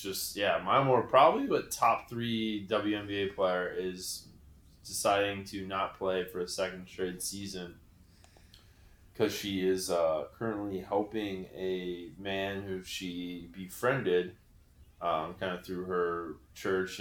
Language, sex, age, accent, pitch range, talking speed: English, male, 20-39, American, 90-105 Hz, 130 wpm